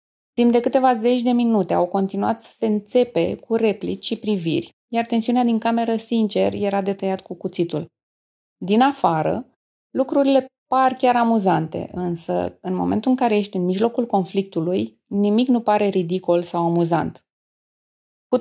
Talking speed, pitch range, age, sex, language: 155 wpm, 180-245 Hz, 20-39, female, Romanian